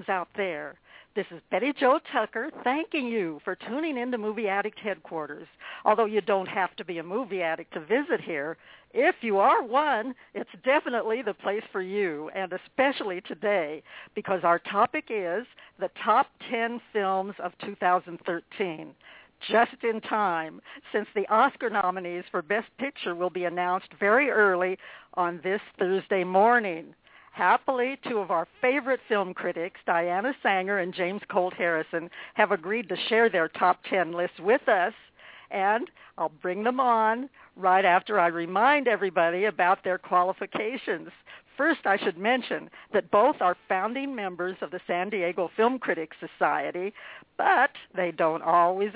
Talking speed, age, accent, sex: 155 wpm, 60-79, American, female